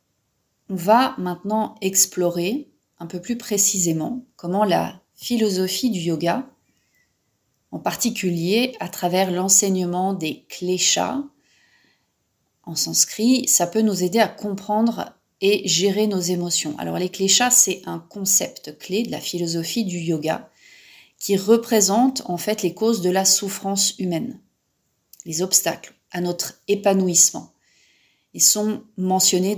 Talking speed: 125 wpm